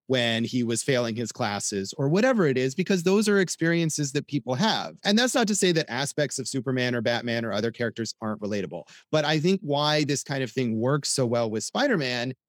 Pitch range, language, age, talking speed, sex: 120-155 Hz, English, 30-49, 220 wpm, male